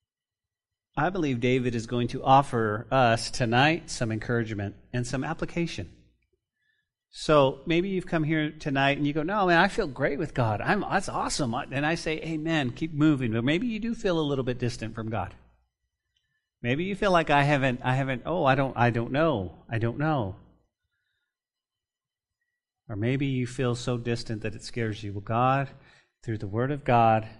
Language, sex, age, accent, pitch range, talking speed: English, male, 40-59, American, 115-150 Hz, 185 wpm